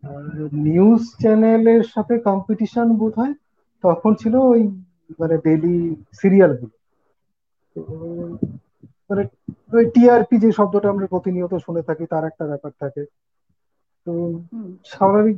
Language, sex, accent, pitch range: Bengali, male, native, 160-215 Hz